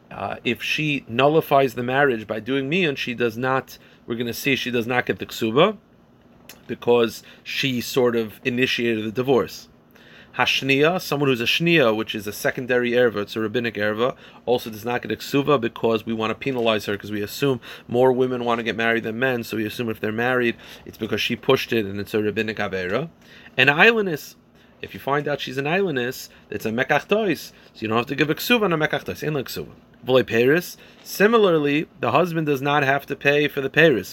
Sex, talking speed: male, 210 wpm